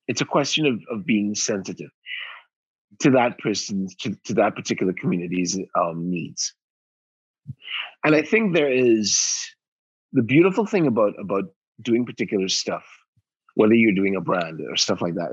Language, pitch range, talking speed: English, 95-145 Hz, 155 wpm